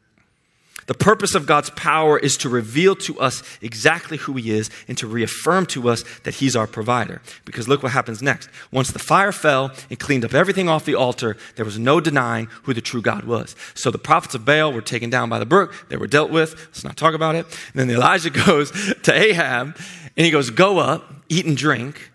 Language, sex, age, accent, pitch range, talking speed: English, male, 30-49, American, 120-155 Hz, 220 wpm